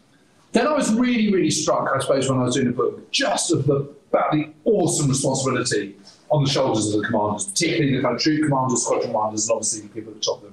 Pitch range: 125-190 Hz